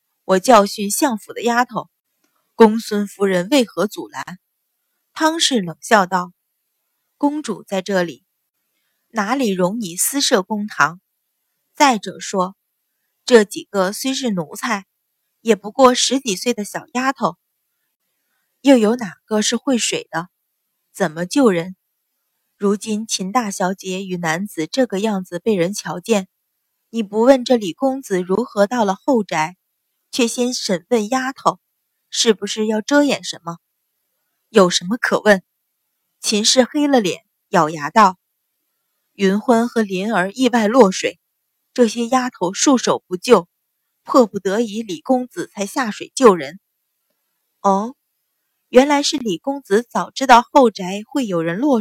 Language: Chinese